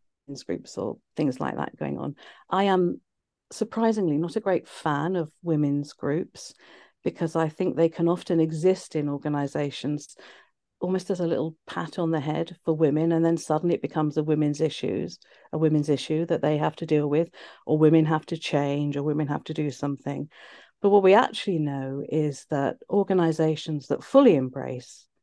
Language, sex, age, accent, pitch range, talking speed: English, female, 50-69, British, 145-185 Hz, 180 wpm